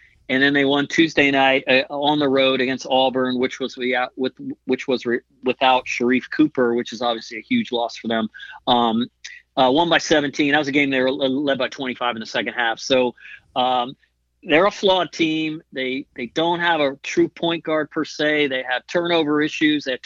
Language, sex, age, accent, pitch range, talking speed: English, male, 40-59, American, 130-155 Hz, 210 wpm